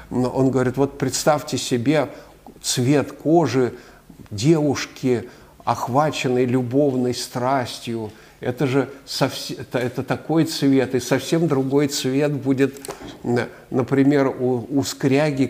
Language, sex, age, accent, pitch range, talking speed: Russian, male, 50-69, native, 125-145 Hz, 100 wpm